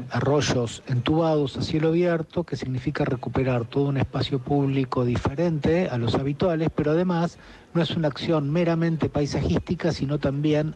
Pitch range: 130-165 Hz